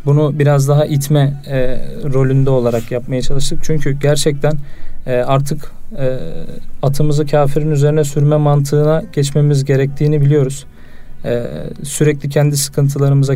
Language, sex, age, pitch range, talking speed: Turkish, male, 40-59, 140-155 Hz, 115 wpm